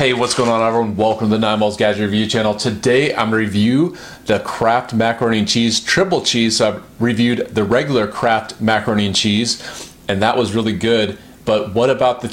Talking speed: 210 wpm